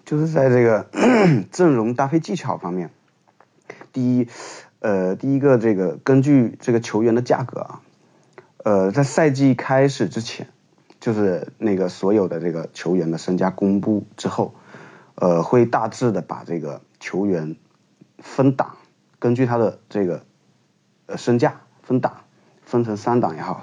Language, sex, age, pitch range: Chinese, male, 30-49, 95-135 Hz